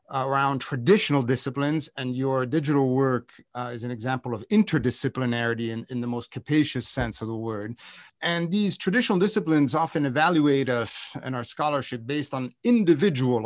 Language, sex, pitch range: English, male, 125-155 Hz